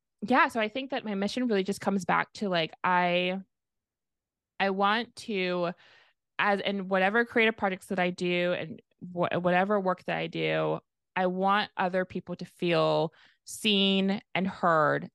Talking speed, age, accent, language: 160 wpm, 20-39, American, English